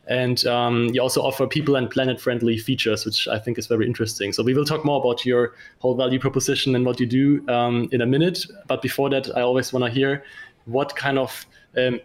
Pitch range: 120-135 Hz